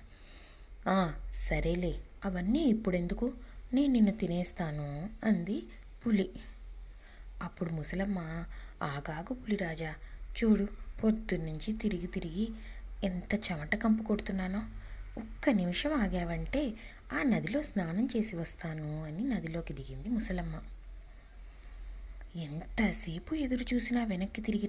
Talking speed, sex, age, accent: 90 wpm, female, 20-39, native